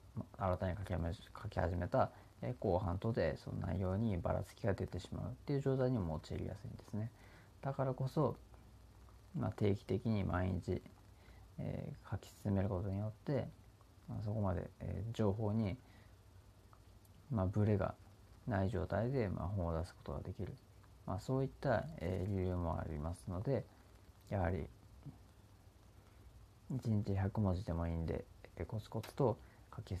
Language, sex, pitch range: Japanese, male, 95-110 Hz